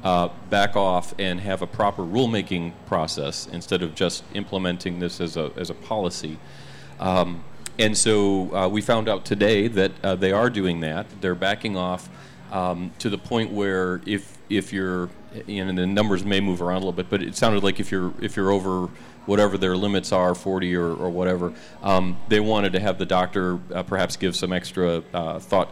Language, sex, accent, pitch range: English, male, American, 90-100 Hz